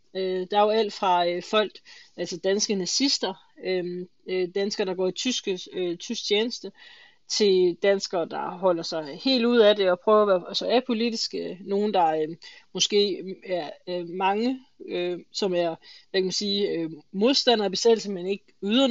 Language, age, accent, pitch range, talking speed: Danish, 20-39, native, 180-220 Hz, 135 wpm